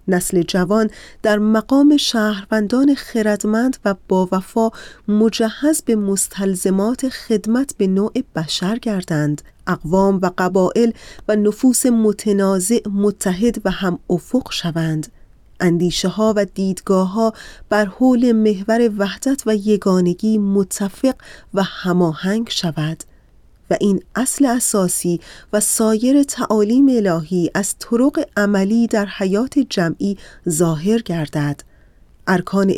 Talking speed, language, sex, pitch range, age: 110 wpm, Persian, female, 185-220 Hz, 30-49